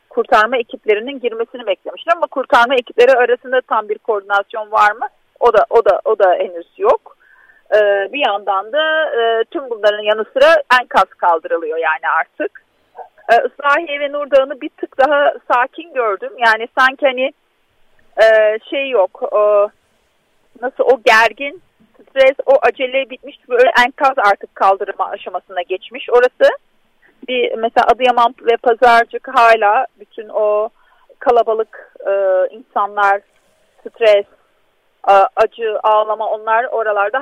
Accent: native